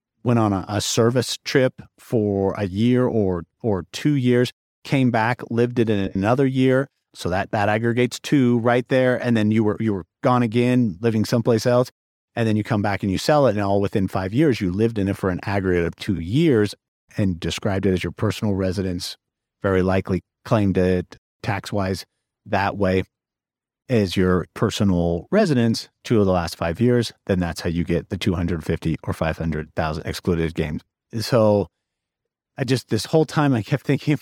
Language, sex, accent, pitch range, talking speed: English, male, American, 100-135 Hz, 185 wpm